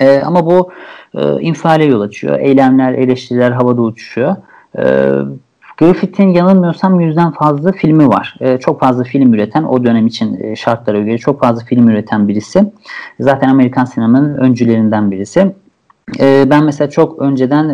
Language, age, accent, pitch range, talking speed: Turkish, 50-69, native, 125-165 Hz, 150 wpm